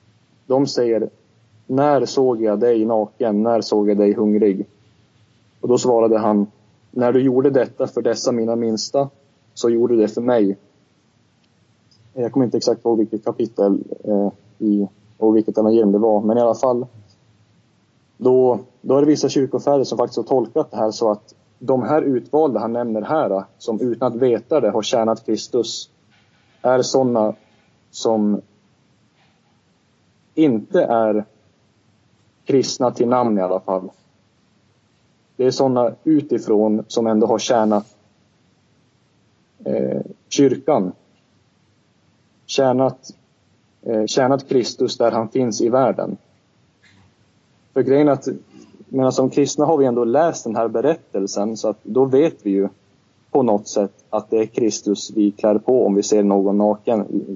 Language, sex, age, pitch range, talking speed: Swedish, male, 20-39, 105-130 Hz, 145 wpm